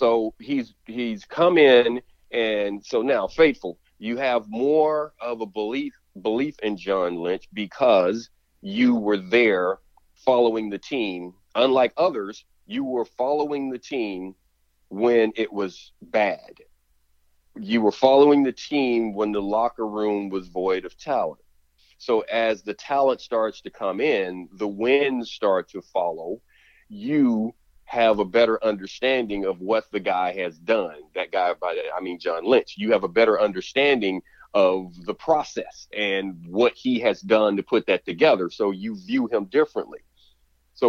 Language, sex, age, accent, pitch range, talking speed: English, male, 40-59, American, 95-130 Hz, 155 wpm